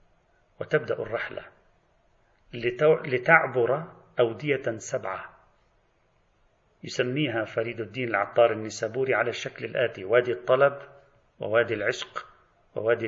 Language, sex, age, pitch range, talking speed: Arabic, male, 40-59, 115-140 Hz, 85 wpm